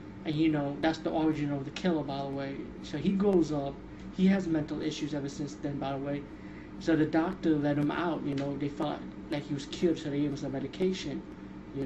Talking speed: 240 wpm